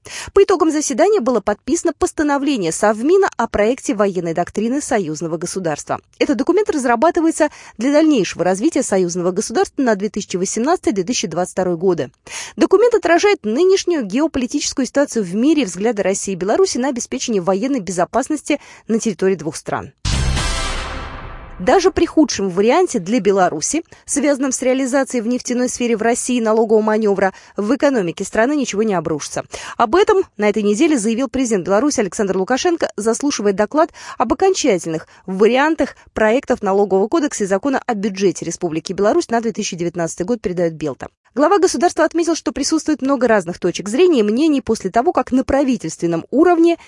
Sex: female